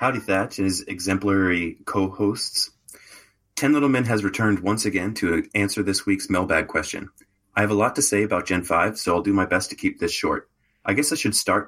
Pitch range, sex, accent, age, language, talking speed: 95-105 Hz, male, American, 30-49, English, 215 wpm